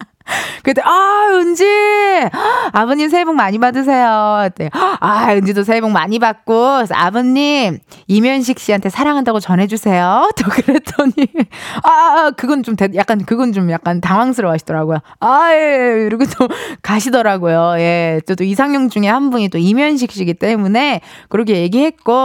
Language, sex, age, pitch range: Korean, female, 20-39, 195-290 Hz